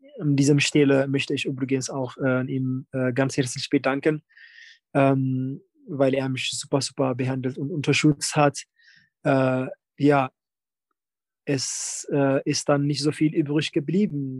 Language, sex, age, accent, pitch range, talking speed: German, male, 20-39, German, 135-155 Hz, 140 wpm